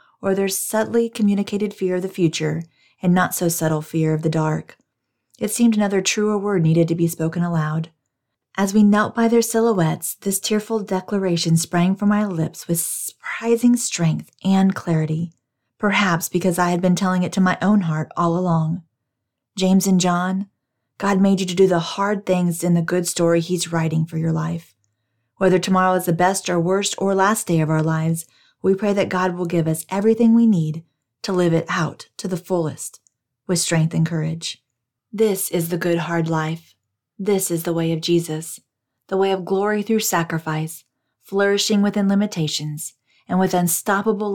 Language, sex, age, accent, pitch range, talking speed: English, female, 40-59, American, 160-195 Hz, 180 wpm